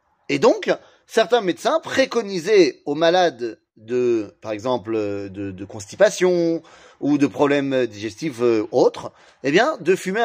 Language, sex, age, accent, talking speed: French, male, 30-49, French, 135 wpm